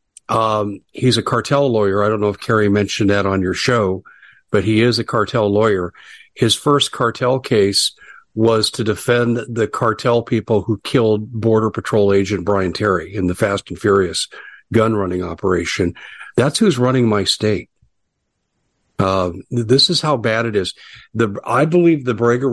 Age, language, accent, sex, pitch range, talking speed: 50-69, English, American, male, 105-120 Hz, 170 wpm